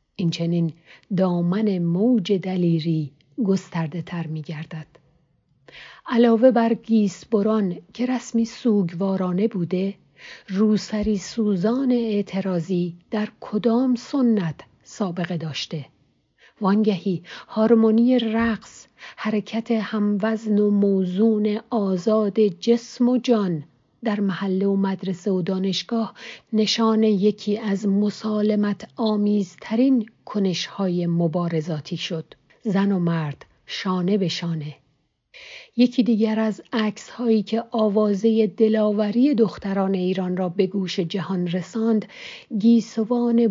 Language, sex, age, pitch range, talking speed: English, female, 50-69, 180-225 Hz, 100 wpm